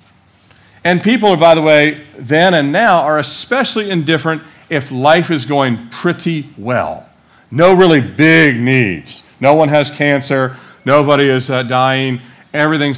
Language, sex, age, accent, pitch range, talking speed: English, male, 50-69, American, 110-160 Hz, 140 wpm